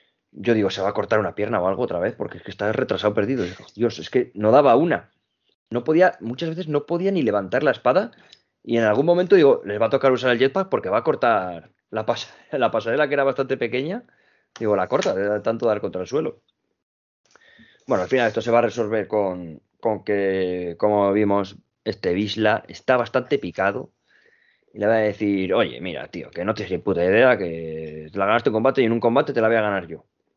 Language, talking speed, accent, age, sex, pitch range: Spanish, 225 wpm, Spanish, 20-39, male, 100-135 Hz